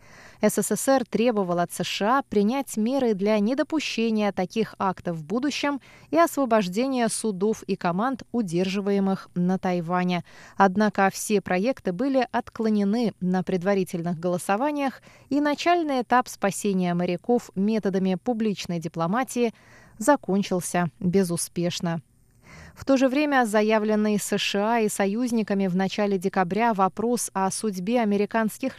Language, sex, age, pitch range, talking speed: Russian, female, 20-39, 190-250 Hz, 110 wpm